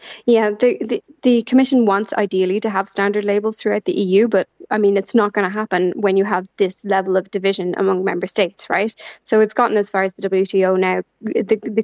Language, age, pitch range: English, 20-39, 195-220 Hz